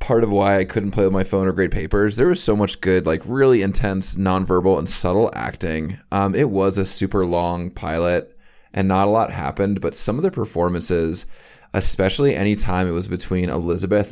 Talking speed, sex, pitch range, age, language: 205 wpm, male, 85-100 Hz, 20-39, English